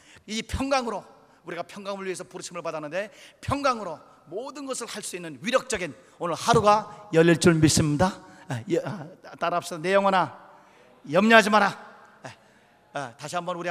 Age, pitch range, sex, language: 40-59, 155-205 Hz, male, Korean